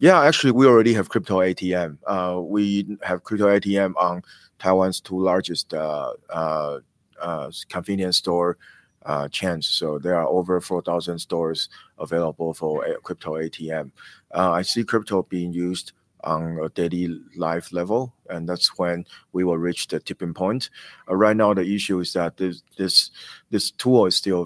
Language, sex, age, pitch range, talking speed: English, male, 30-49, 85-95 Hz, 165 wpm